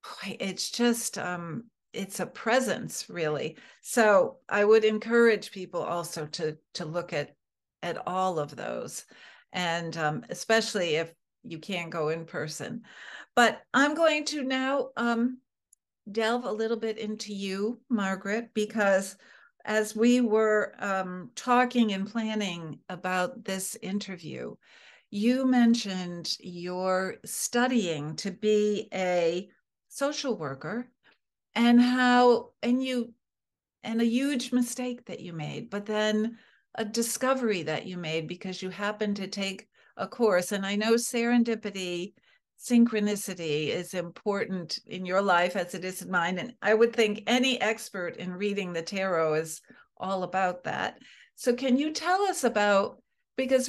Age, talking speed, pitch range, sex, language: 60-79, 140 wpm, 185-235 Hz, female, English